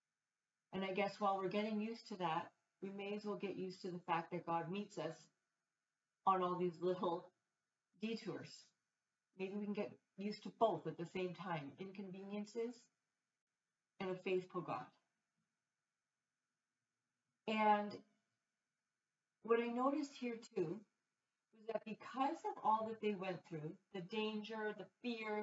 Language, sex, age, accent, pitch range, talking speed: English, female, 40-59, American, 155-230 Hz, 145 wpm